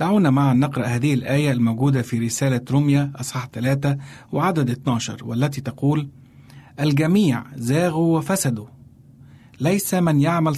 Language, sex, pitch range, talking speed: Arabic, male, 125-150 Hz, 120 wpm